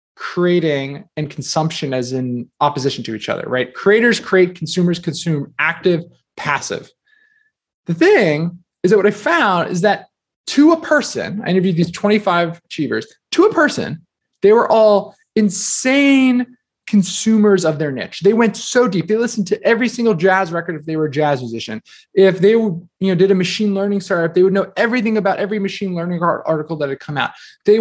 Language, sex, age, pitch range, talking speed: English, male, 20-39, 150-215 Hz, 180 wpm